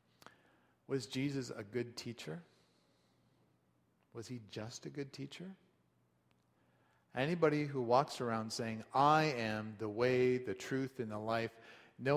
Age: 40-59